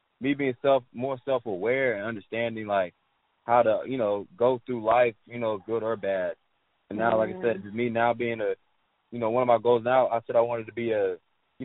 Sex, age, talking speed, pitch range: male, 20-39, 225 wpm, 100-120 Hz